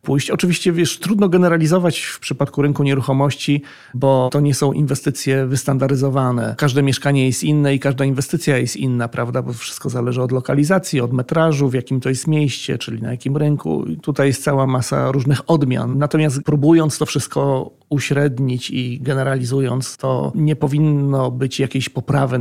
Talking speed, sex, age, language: 165 wpm, male, 40-59, Polish